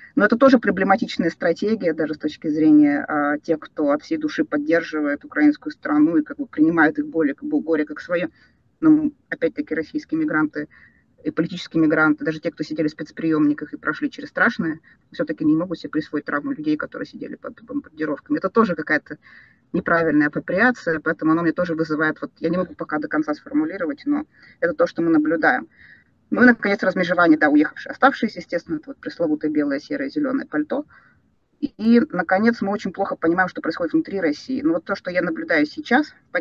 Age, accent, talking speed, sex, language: 20-39, native, 190 wpm, female, Russian